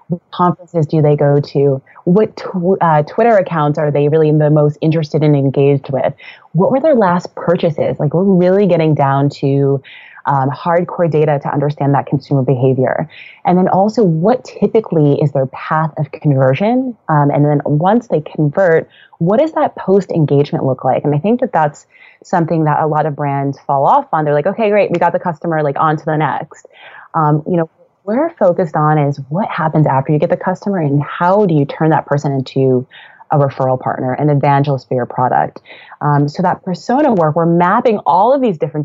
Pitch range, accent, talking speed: 140-180 Hz, American, 200 wpm